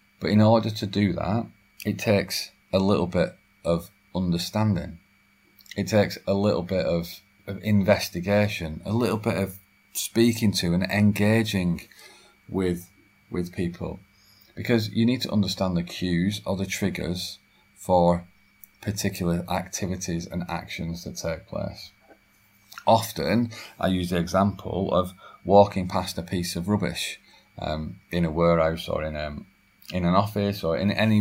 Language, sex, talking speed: English, male, 145 wpm